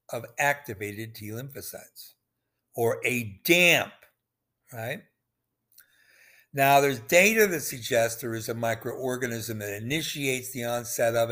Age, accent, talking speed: 60-79, American, 115 wpm